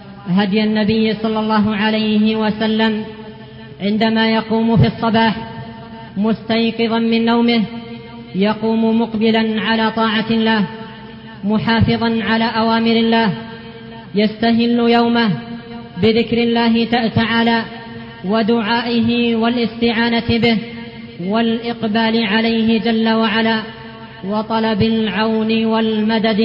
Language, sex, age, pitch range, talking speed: Arabic, female, 20-39, 215-230 Hz, 85 wpm